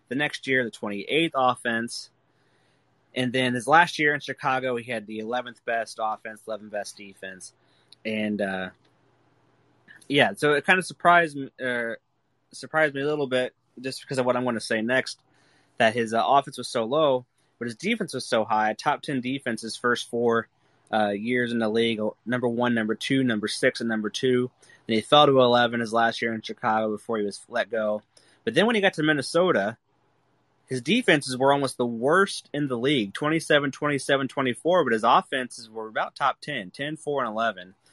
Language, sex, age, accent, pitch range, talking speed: English, male, 20-39, American, 115-140 Hz, 200 wpm